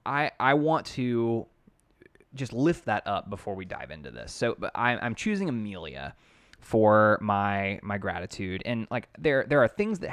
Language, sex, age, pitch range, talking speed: English, male, 20-39, 100-120 Hz, 170 wpm